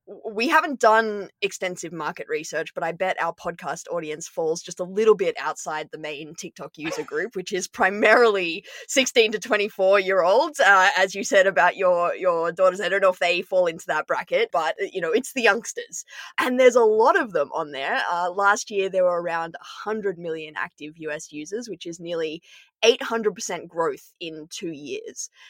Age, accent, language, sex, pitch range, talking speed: 20-39, Australian, English, female, 170-230 Hz, 190 wpm